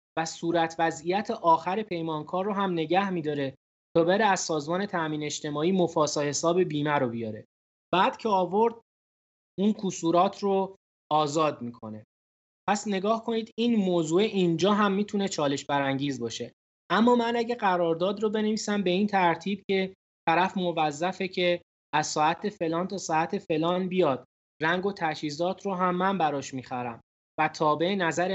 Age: 20-39